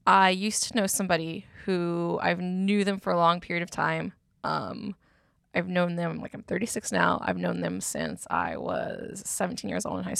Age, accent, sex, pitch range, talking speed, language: 20-39, American, female, 165-215 Hz, 200 wpm, English